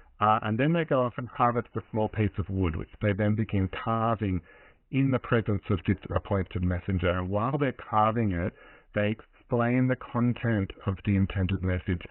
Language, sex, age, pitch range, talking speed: English, male, 50-69, 95-115 Hz, 190 wpm